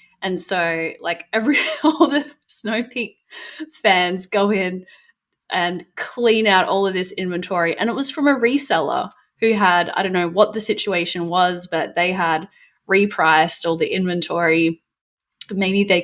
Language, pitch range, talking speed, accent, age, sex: English, 170-210 Hz, 155 wpm, Australian, 10-29, female